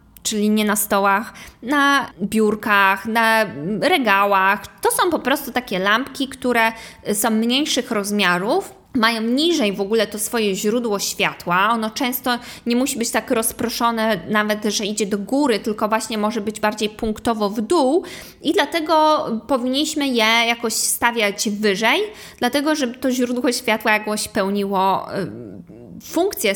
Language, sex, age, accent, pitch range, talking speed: Polish, female, 20-39, native, 205-240 Hz, 140 wpm